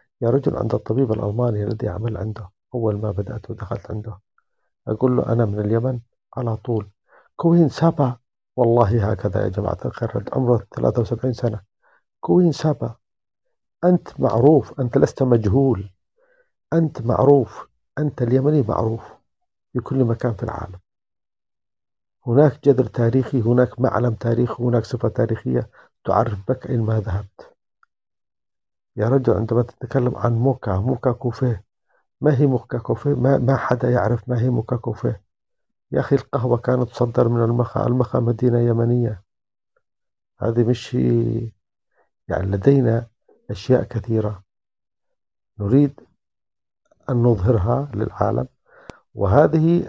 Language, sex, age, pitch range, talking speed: English, male, 50-69, 110-130 Hz, 125 wpm